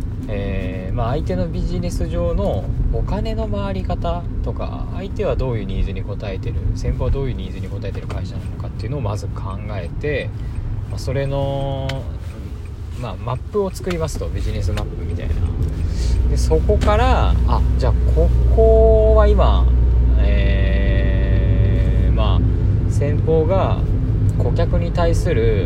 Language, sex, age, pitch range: Japanese, male, 20-39, 90-110 Hz